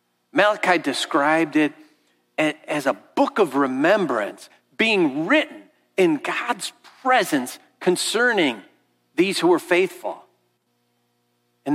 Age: 50-69